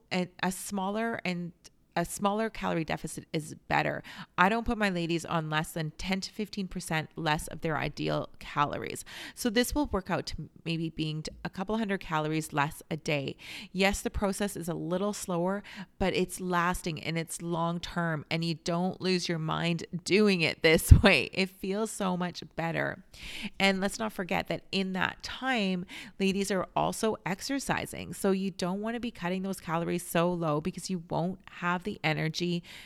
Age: 30-49